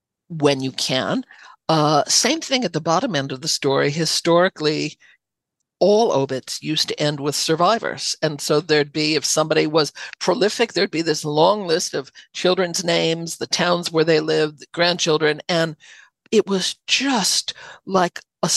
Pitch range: 150-185 Hz